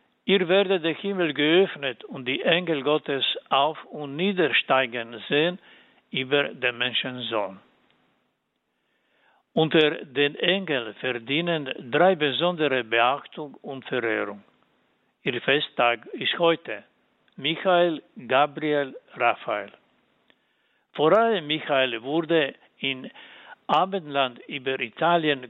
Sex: male